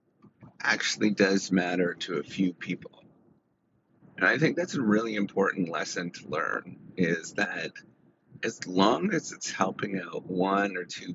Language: English